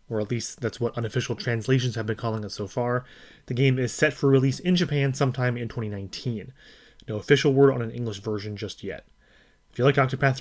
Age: 30-49